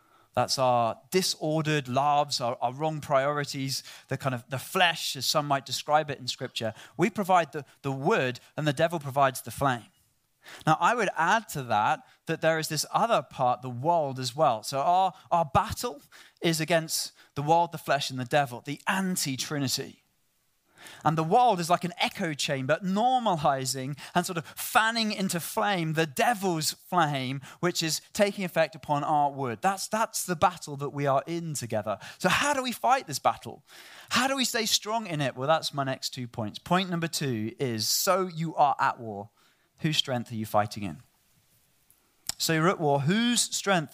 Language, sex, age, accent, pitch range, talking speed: English, male, 20-39, British, 130-175 Hz, 185 wpm